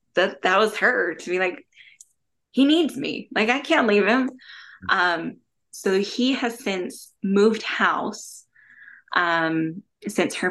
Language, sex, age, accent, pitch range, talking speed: English, female, 20-39, American, 160-210 Hz, 145 wpm